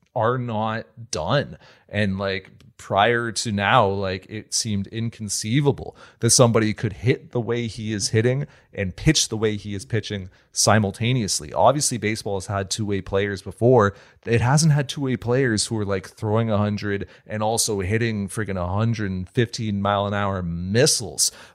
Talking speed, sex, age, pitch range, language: 160 wpm, male, 30-49, 95-120 Hz, English